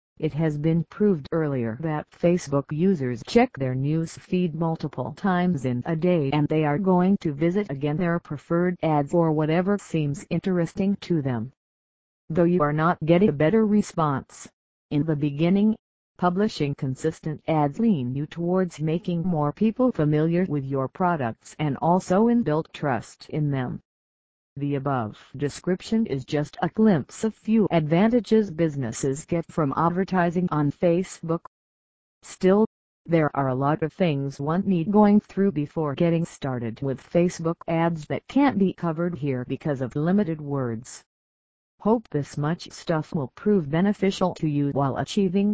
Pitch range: 145-180 Hz